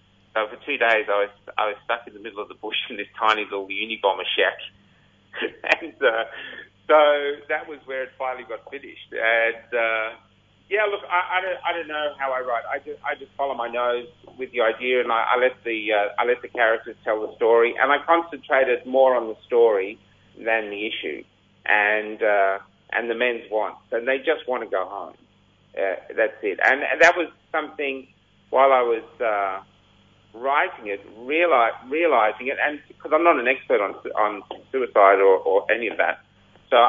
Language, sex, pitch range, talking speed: English, male, 110-155 Hz, 195 wpm